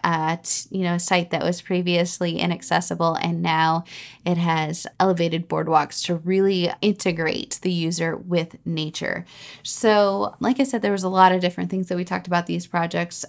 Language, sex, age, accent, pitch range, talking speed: English, female, 20-39, American, 165-190 Hz, 175 wpm